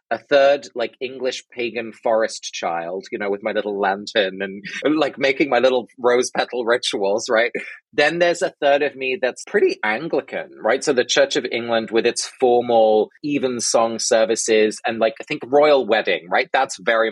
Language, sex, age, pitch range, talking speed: English, male, 30-49, 115-150 Hz, 185 wpm